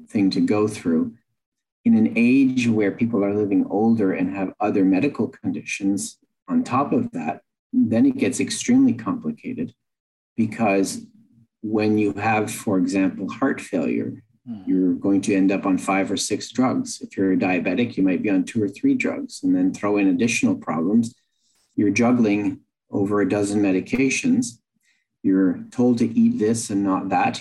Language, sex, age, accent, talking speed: English, male, 40-59, American, 165 wpm